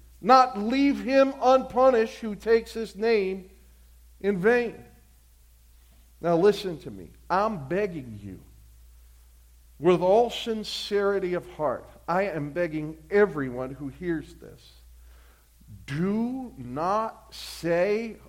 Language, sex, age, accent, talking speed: English, male, 50-69, American, 105 wpm